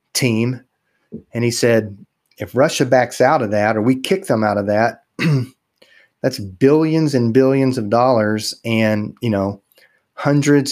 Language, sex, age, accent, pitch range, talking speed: English, male, 30-49, American, 110-125 Hz, 150 wpm